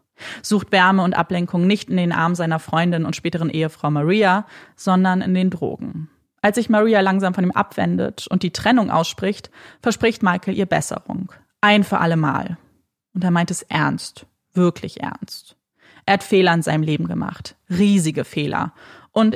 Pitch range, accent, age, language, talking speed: 170-205 Hz, German, 20-39, German, 165 wpm